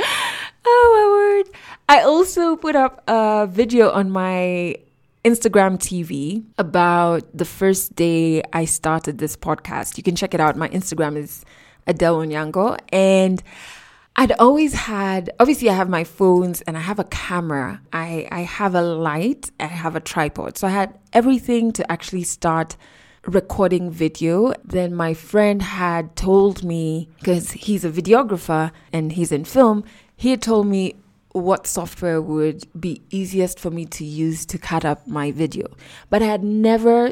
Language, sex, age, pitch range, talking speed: English, female, 20-39, 165-210 Hz, 155 wpm